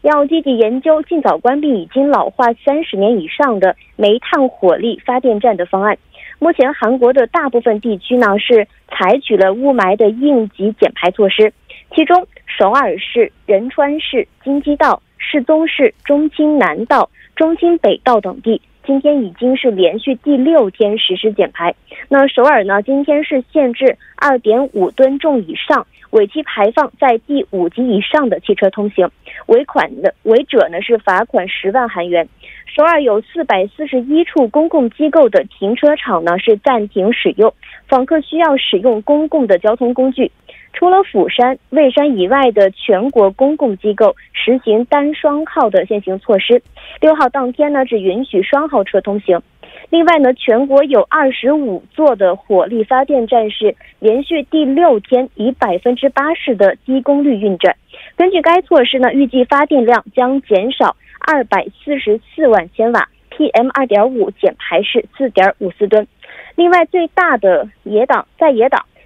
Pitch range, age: 215-295 Hz, 20-39